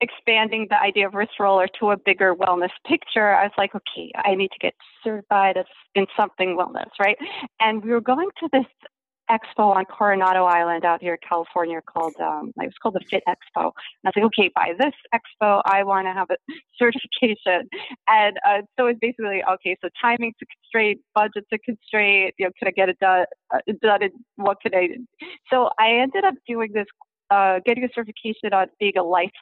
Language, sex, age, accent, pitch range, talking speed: English, female, 30-49, American, 190-240 Hz, 205 wpm